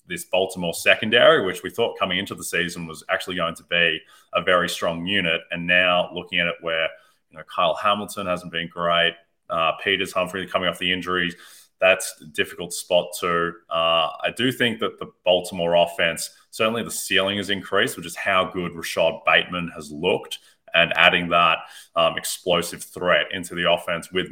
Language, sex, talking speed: English, male, 180 wpm